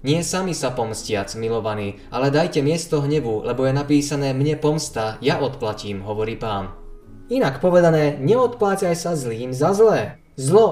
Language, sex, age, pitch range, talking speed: Slovak, male, 20-39, 125-155 Hz, 145 wpm